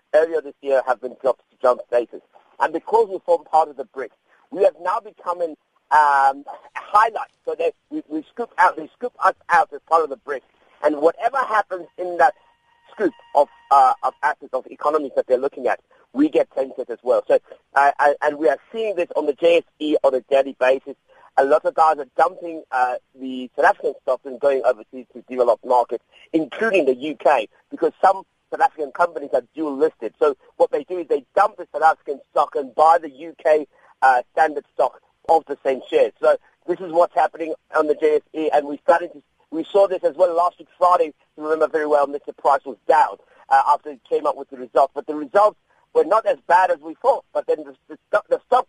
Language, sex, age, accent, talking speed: English, male, 40-59, British, 215 wpm